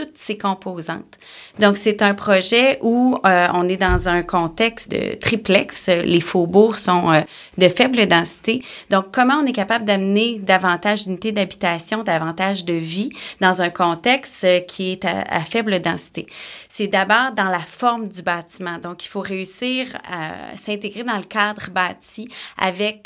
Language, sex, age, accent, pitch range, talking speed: French, female, 30-49, Canadian, 180-220 Hz, 160 wpm